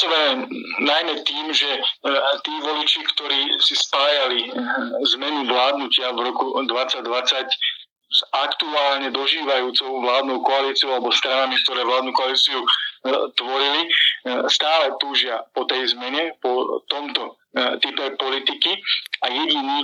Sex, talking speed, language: male, 105 wpm, Slovak